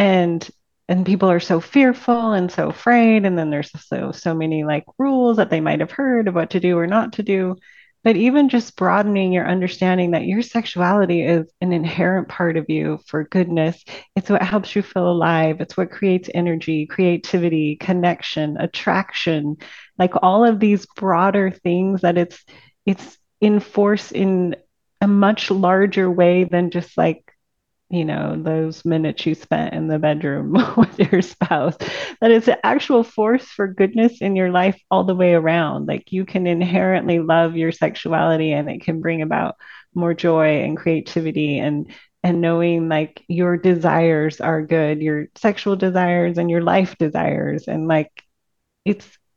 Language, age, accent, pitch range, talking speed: English, 30-49, American, 165-200 Hz, 165 wpm